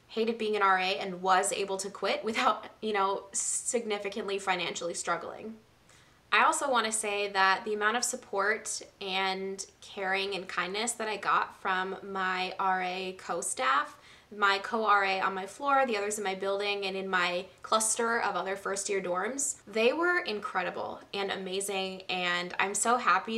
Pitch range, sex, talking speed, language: 190-215 Hz, female, 160 wpm, English